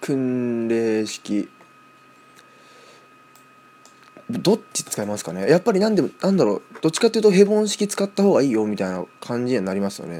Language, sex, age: Japanese, male, 20-39